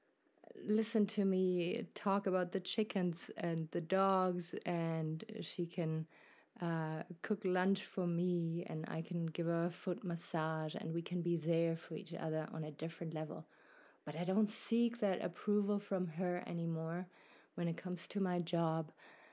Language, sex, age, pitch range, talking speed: English, female, 30-49, 165-190 Hz, 165 wpm